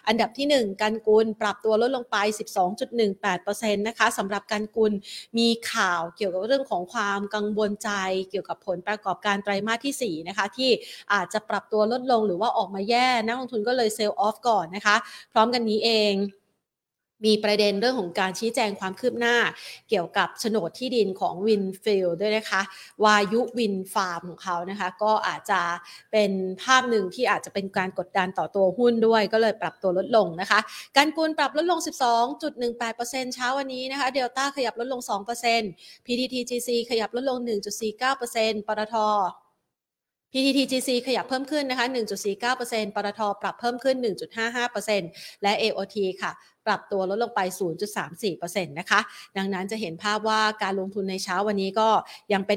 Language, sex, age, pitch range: Thai, female, 30-49, 195-235 Hz